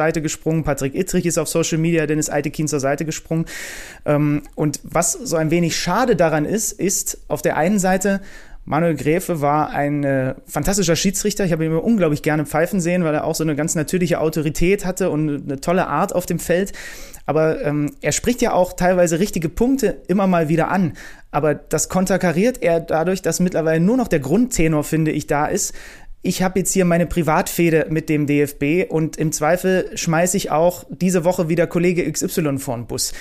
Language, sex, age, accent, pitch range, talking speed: German, male, 30-49, German, 155-185 Hz, 190 wpm